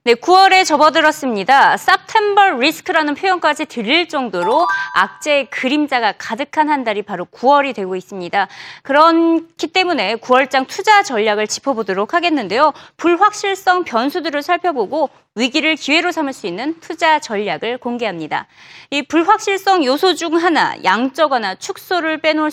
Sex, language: female, Korean